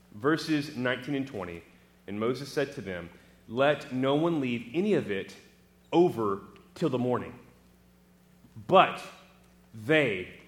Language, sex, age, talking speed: English, male, 30-49, 125 wpm